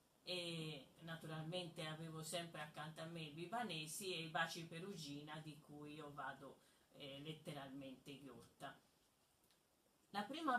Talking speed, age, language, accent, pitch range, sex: 125 wpm, 40-59, Italian, native, 150-195 Hz, female